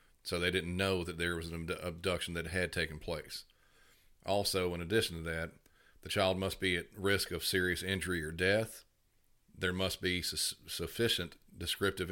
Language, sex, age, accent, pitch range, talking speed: English, male, 40-59, American, 85-95 Hz, 175 wpm